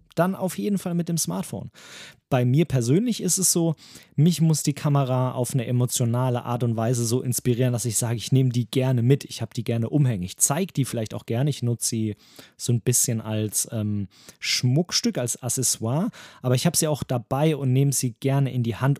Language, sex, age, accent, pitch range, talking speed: German, male, 30-49, German, 115-150 Hz, 215 wpm